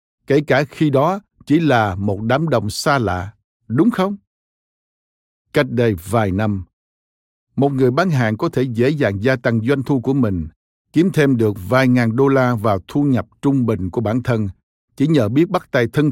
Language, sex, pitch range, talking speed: Vietnamese, male, 105-145 Hz, 195 wpm